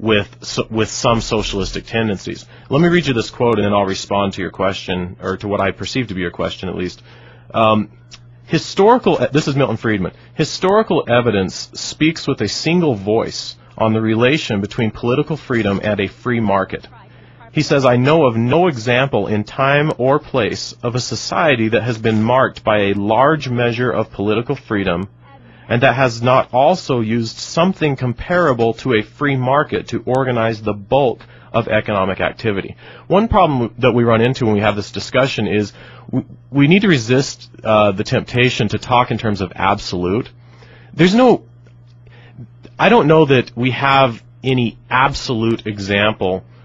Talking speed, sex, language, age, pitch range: 170 wpm, male, English, 30-49, 105-130 Hz